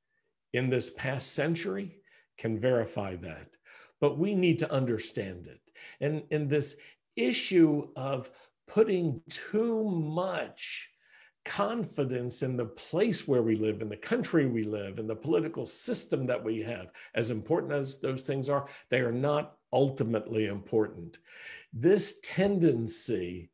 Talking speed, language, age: 135 wpm, English, 60-79